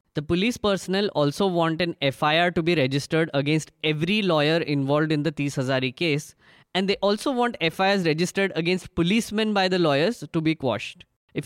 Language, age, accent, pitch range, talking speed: English, 20-39, Indian, 140-175 Hz, 180 wpm